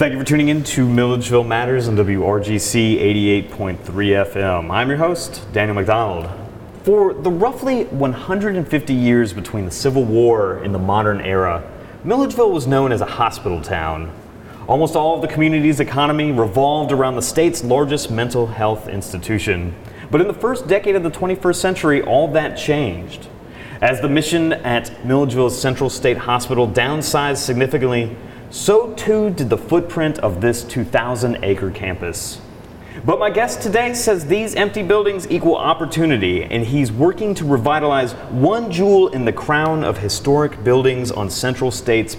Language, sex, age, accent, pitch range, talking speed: English, male, 30-49, American, 110-160 Hz, 155 wpm